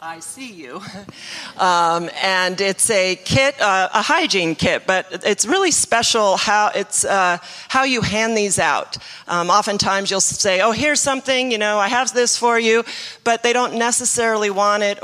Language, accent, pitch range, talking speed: English, American, 180-230 Hz, 175 wpm